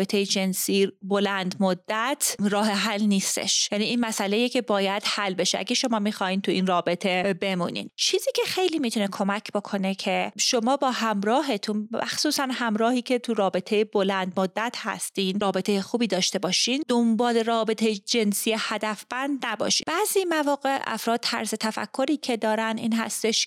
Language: Persian